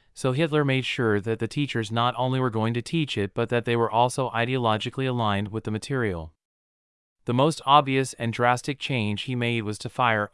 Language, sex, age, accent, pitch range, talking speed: English, male, 30-49, American, 110-130 Hz, 205 wpm